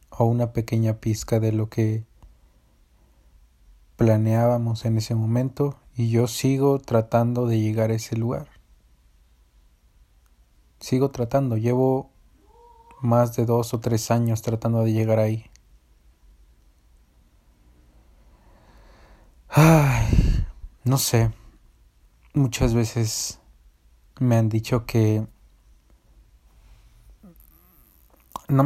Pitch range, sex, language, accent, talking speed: 70-120 Hz, male, Spanish, Mexican, 90 wpm